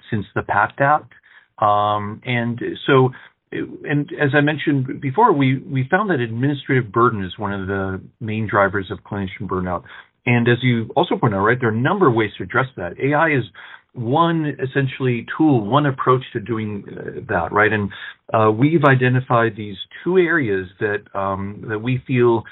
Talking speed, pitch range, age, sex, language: 175 wpm, 105-125 Hz, 40-59, male, English